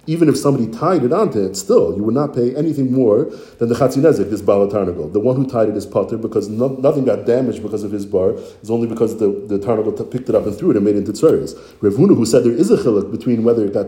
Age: 40-59